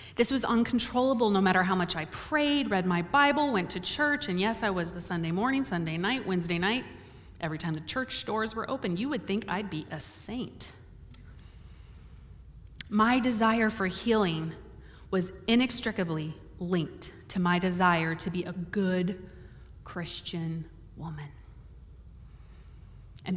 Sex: female